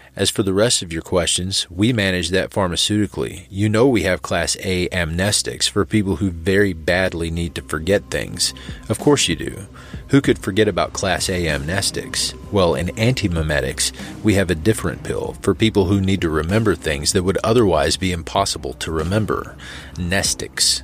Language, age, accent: English, 30-49, American